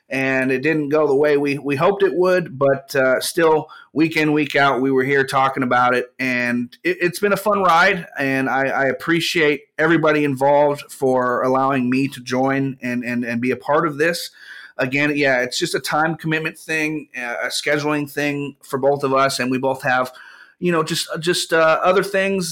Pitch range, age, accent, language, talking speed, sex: 130-155 Hz, 30-49, American, English, 205 wpm, male